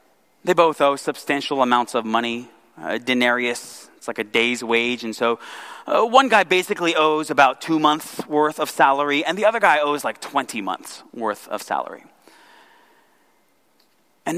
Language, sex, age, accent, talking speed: English, male, 30-49, American, 165 wpm